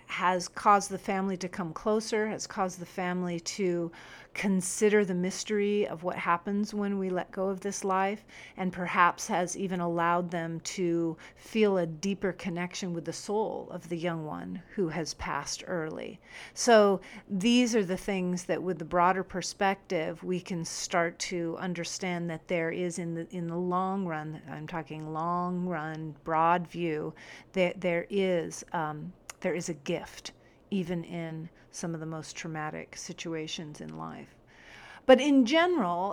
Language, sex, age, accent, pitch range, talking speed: English, female, 40-59, American, 175-215 Hz, 165 wpm